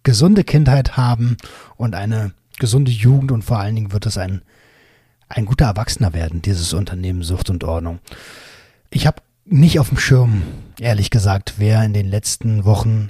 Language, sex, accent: German, male, German